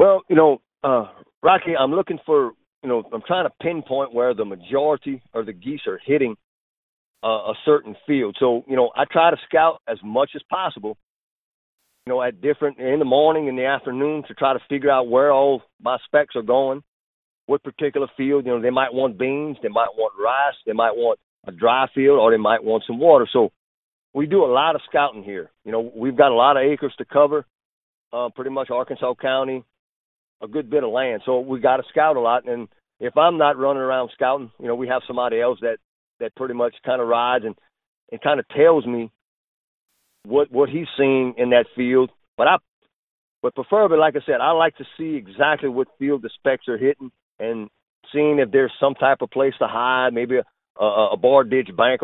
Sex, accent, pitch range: male, American, 125-150 Hz